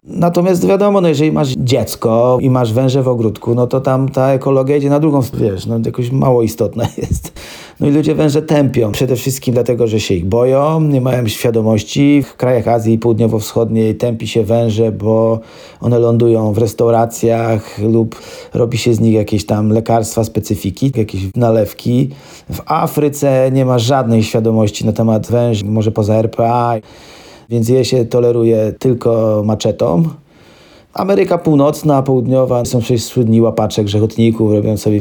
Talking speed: 155 wpm